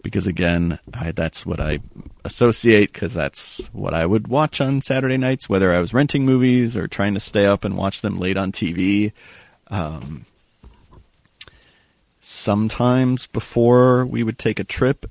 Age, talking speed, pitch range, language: 40-59, 160 wpm, 90-115 Hz, English